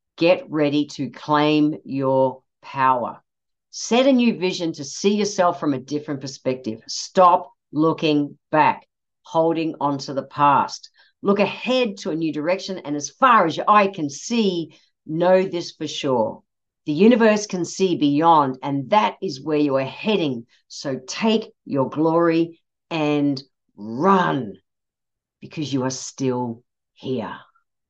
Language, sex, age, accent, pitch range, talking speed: English, female, 50-69, Australian, 145-220 Hz, 140 wpm